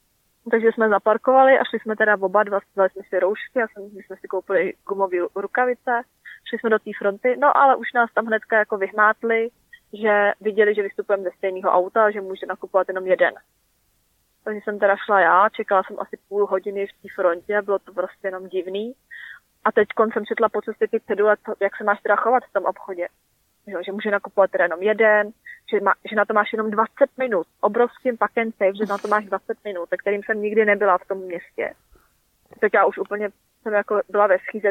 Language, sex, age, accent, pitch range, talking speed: Czech, female, 20-39, native, 195-220 Hz, 205 wpm